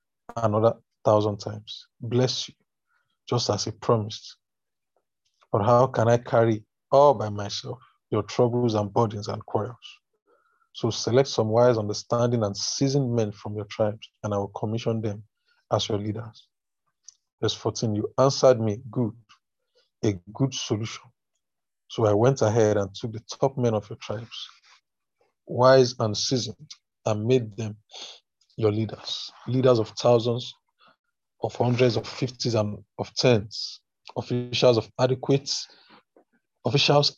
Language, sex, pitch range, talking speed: English, male, 110-130 Hz, 135 wpm